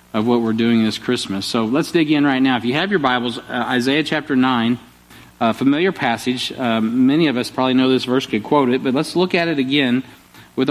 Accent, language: American, English